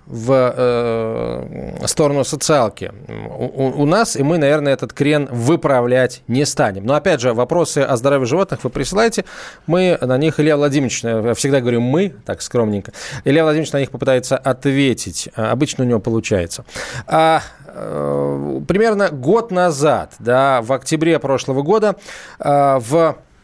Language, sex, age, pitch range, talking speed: Russian, male, 20-39, 125-170 Hz, 140 wpm